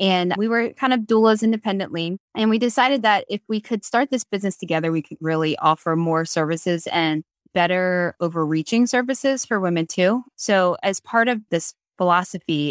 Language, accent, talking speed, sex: English, American, 175 wpm, female